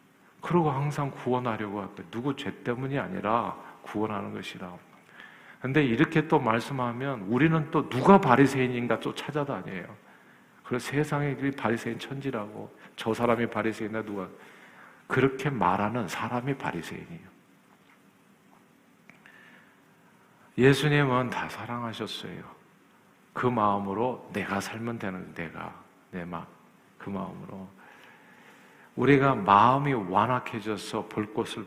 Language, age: Korean, 50-69